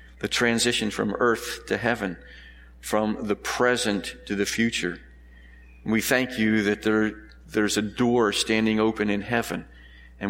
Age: 50-69